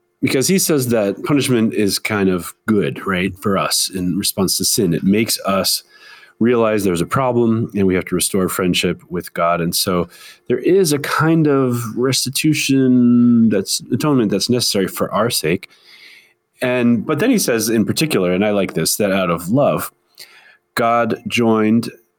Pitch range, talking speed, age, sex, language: 90-120 Hz, 170 wpm, 30-49, male, English